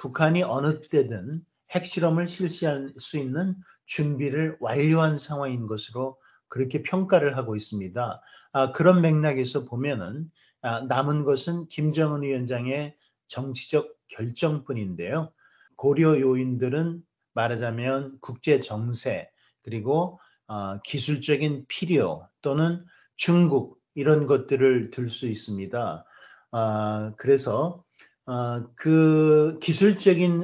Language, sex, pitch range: Korean, male, 125-160 Hz